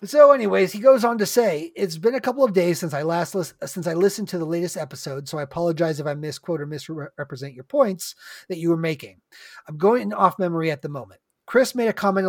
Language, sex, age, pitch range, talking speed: English, male, 30-49, 160-200 Hz, 245 wpm